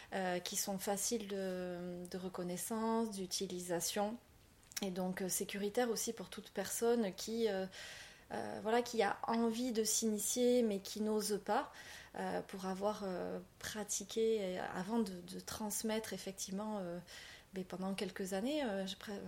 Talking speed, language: 135 wpm, French